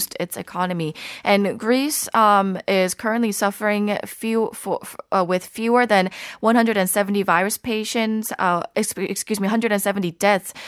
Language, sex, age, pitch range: Korean, female, 20-39, 190-230 Hz